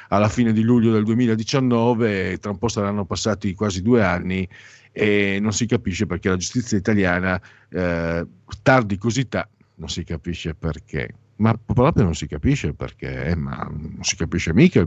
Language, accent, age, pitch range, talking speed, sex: Italian, native, 50-69, 90-115 Hz, 165 wpm, male